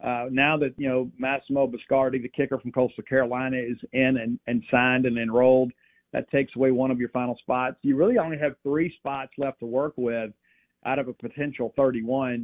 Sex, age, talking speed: male, 40-59, 205 wpm